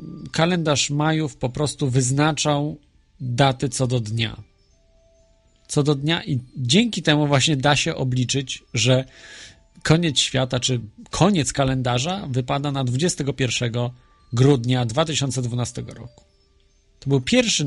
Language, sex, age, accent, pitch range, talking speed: Polish, male, 40-59, native, 120-150 Hz, 115 wpm